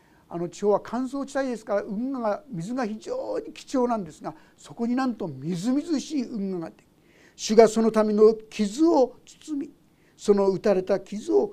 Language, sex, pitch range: Japanese, male, 190-265 Hz